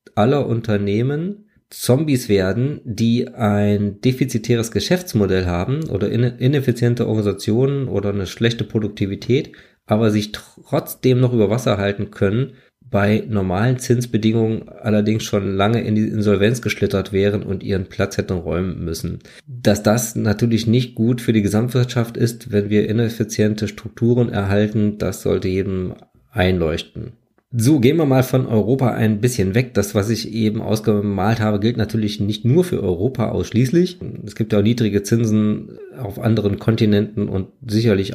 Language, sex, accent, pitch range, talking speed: German, male, German, 100-120 Hz, 145 wpm